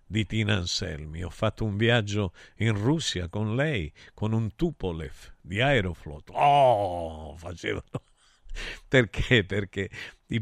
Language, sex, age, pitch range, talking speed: Italian, male, 50-69, 90-115 Hz, 120 wpm